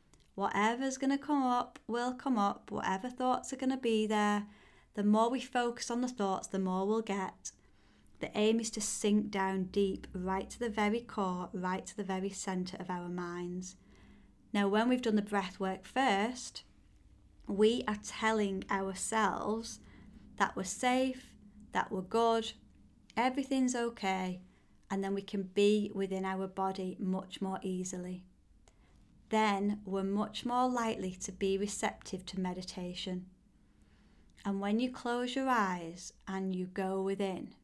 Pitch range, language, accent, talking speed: 190-220 Hz, English, British, 155 wpm